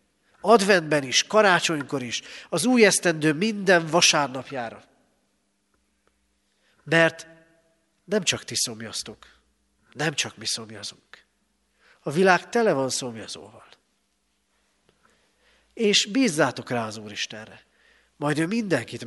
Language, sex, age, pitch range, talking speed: Hungarian, male, 40-59, 125-165 Hz, 100 wpm